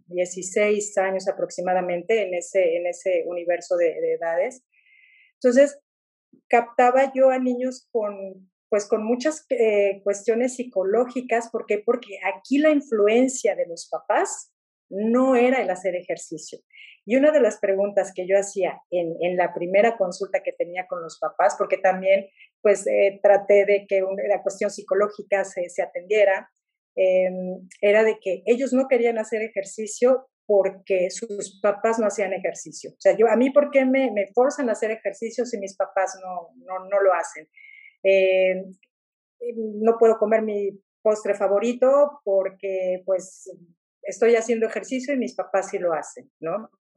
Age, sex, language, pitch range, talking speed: 40-59, female, Spanish, 190-255 Hz, 160 wpm